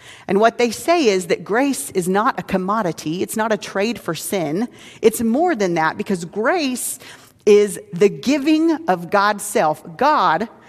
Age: 40-59